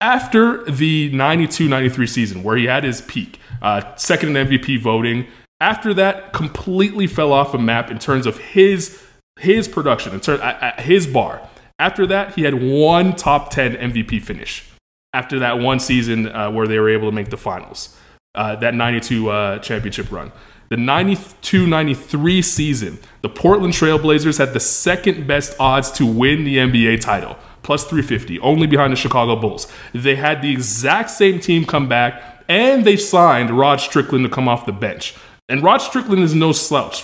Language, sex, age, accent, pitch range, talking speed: English, male, 20-39, American, 120-165 Hz, 175 wpm